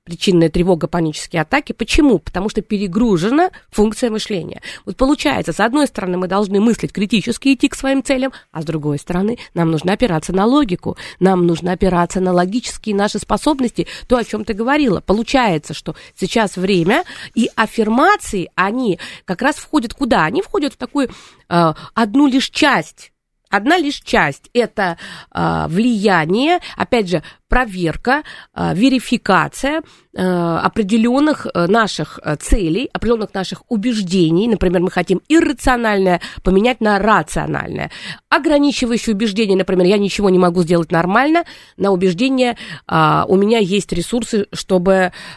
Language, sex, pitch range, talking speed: Russian, female, 175-240 Hz, 135 wpm